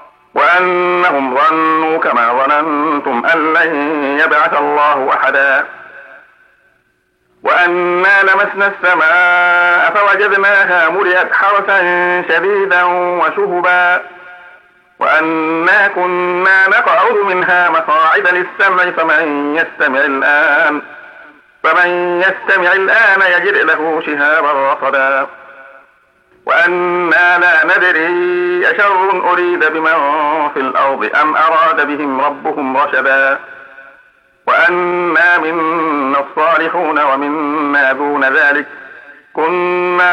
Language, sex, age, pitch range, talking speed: Arabic, male, 50-69, 160-180 Hz, 80 wpm